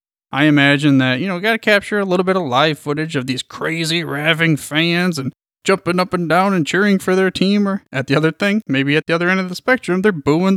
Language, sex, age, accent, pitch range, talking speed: English, male, 20-39, American, 130-175 Hz, 245 wpm